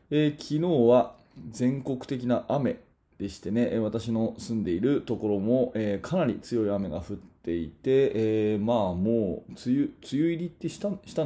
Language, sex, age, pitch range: Japanese, male, 20-39, 100-135 Hz